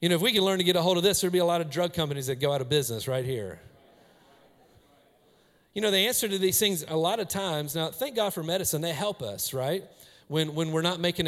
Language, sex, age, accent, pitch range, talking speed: English, male, 40-59, American, 155-195 Hz, 270 wpm